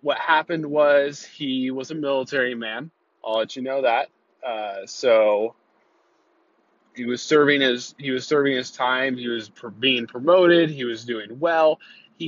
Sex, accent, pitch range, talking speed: male, American, 115-150 Hz, 160 wpm